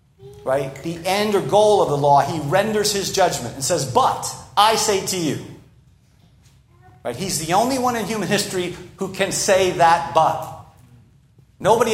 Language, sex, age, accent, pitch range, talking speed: English, male, 50-69, American, 135-205 Hz, 165 wpm